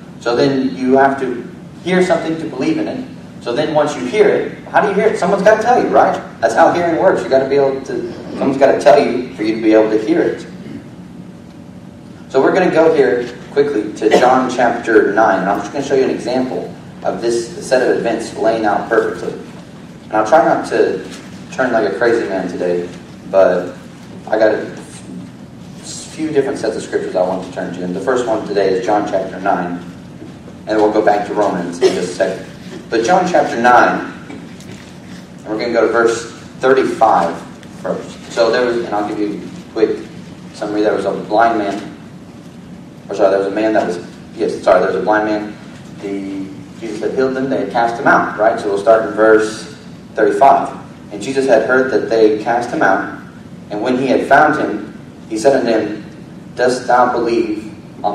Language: English